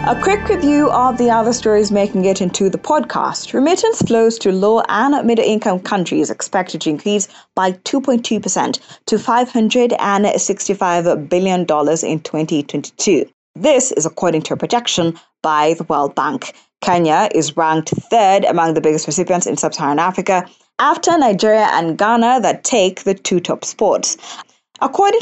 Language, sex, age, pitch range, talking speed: English, female, 20-39, 160-230 Hz, 145 wpm